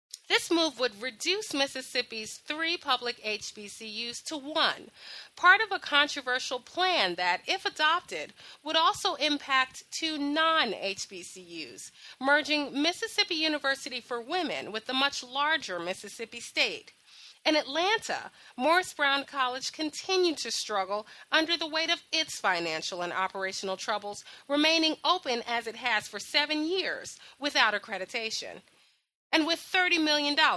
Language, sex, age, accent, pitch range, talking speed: English, female, 30-49, American, 225-320 Hz, 130 wpm